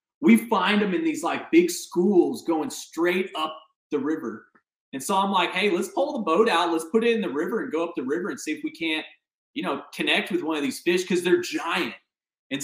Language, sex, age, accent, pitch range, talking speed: English, male, 30-49, American, 165-235 Hz, 240 wpm